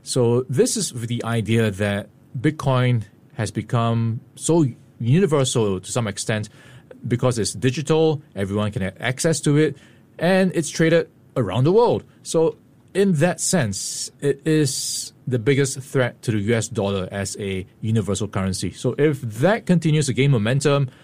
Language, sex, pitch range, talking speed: English, male, 110-145 Hz, 150 wpm